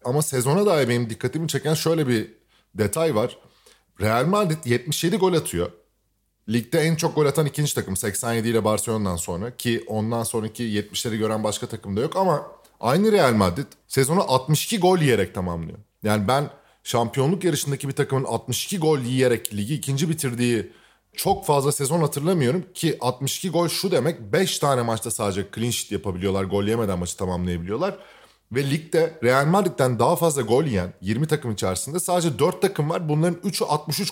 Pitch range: 110-155 Hz